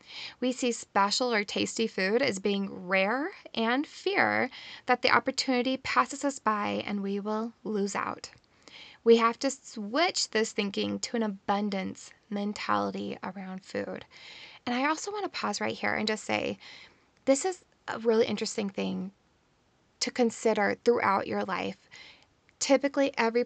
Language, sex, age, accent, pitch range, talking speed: English, female, 20-39, American, 200-240 Hz, 150 wpm